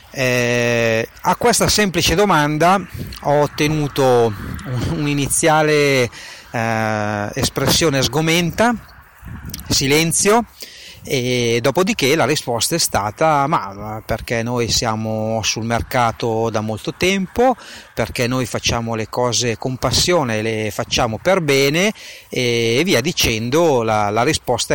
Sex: male